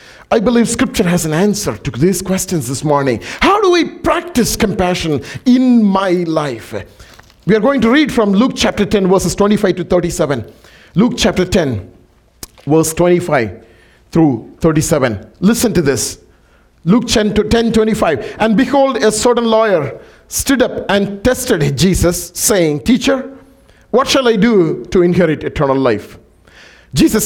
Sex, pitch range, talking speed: male, 135-210 Hz, 145 wpm